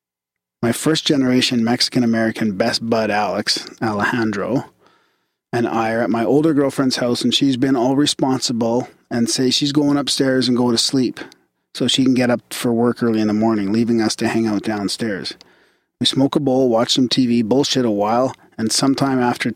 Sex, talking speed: male, 180 wpm